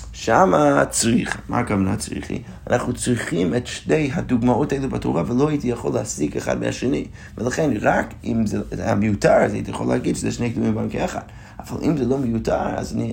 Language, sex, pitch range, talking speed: Hebrew, male, 95-120 Hz, 185 wpm